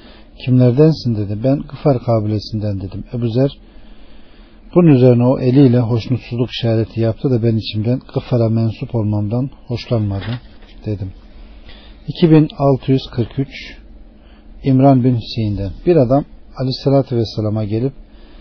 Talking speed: 105 wpm